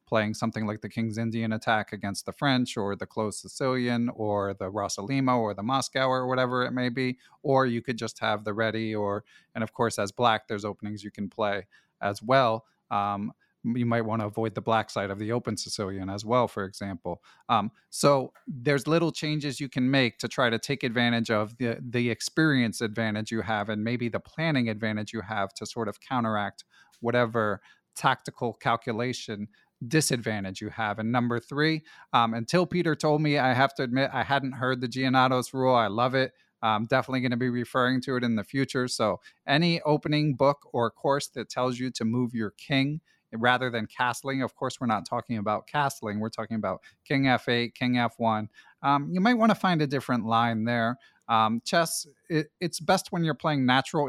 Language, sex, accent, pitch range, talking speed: English, male, American, 110-135 Hz, 200 wpm